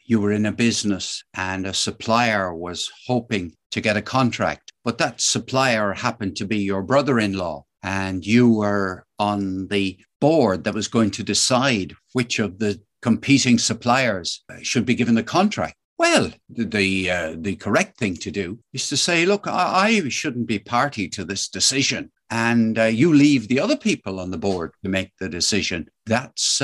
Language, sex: English, male